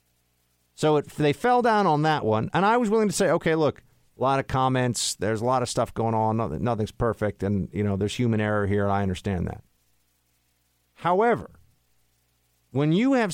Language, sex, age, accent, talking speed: English, male, 50-69, American, 200 wpm